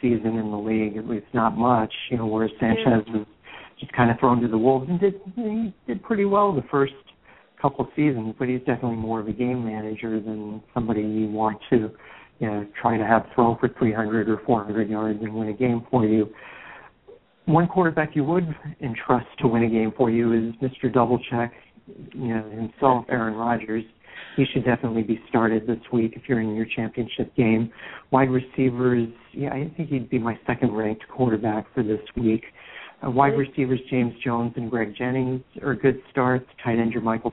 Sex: male